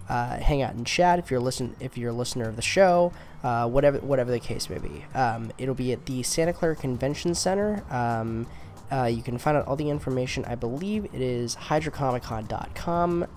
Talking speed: 200 wpm